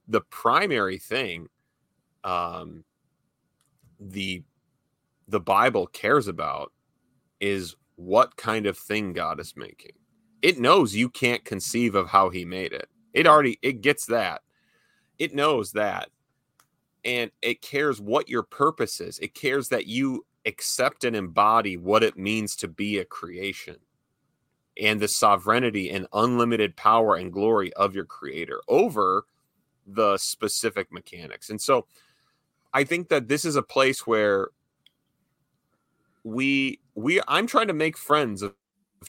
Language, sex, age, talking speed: English, male, 30-49, 140 wpm